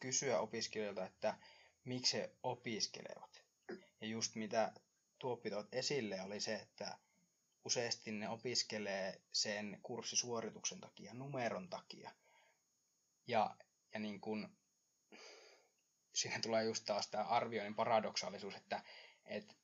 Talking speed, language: 105 wpm, Finnish